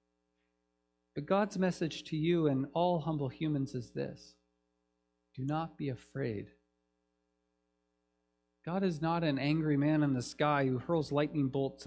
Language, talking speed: English, 140 wpm